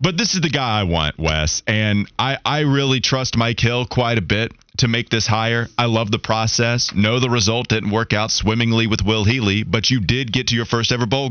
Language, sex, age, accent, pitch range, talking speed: English, male, 30-49, American, 105-130 Hz, 240 wpm